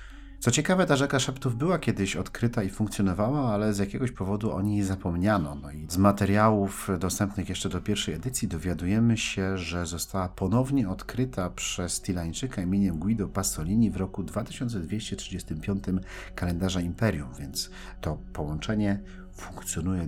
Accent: native